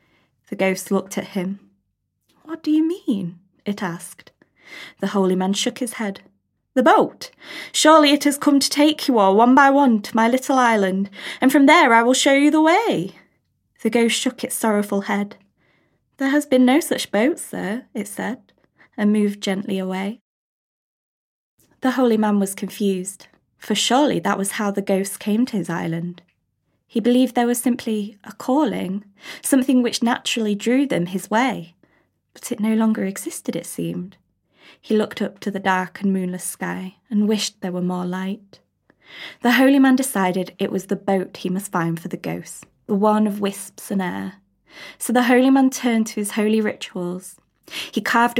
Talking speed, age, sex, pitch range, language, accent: 180 wpm, 20-39, female, 195-250 Hz, English, British